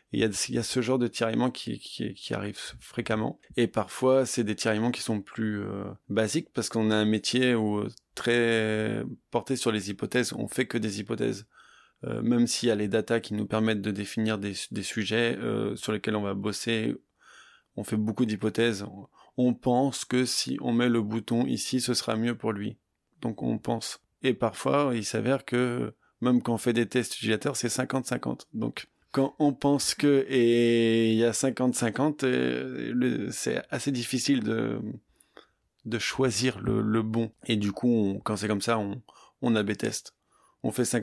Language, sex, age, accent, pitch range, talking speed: French, male, 20-39, French, 105-120 Hz, 185 wpm